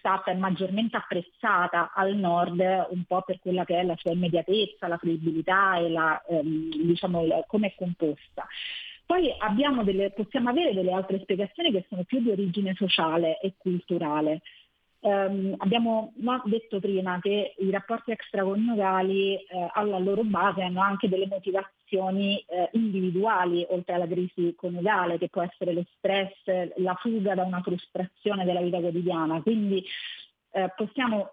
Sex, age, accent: female, 30-49, native